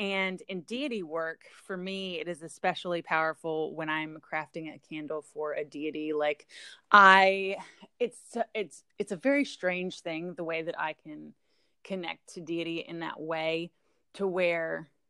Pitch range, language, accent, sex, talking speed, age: 155-185 Hz, English, American, female, 160 wpm, 20-39